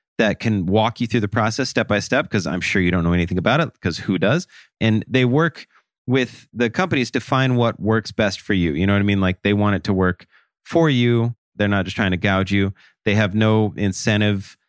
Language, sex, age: English, male, 30-49